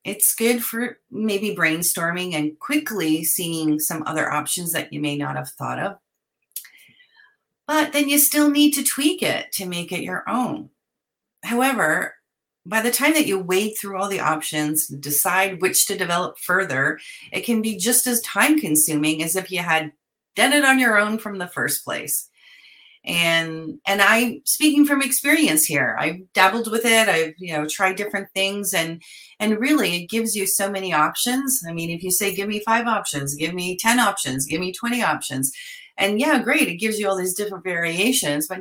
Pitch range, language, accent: 165-255 Hz, English, American